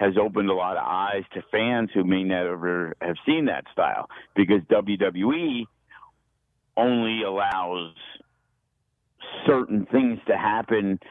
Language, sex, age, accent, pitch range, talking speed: English, male, 50-69, American, 95-110 Hz, 125 wpm